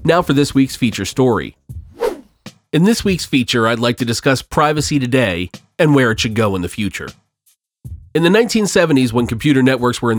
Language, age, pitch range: English, 40-59, 115-155 Hz